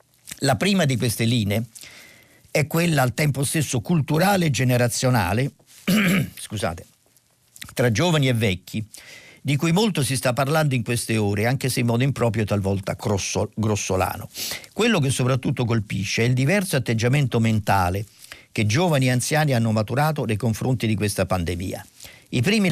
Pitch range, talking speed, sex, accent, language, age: 110-140 Hz, 150 wpm, male, native, Italian, 50-69